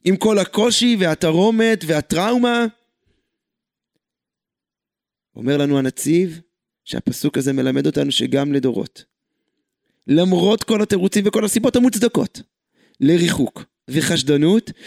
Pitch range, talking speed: 175-230 Hz, 90 wpm